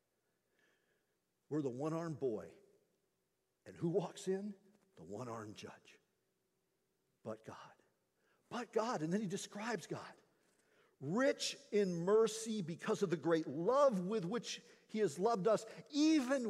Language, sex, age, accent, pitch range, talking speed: English, male, 50-69, American, 170-240 Hz, 125 wpm